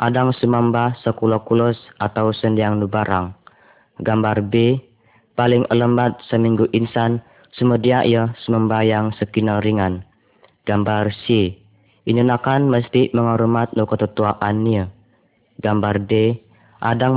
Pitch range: 110-120 Hz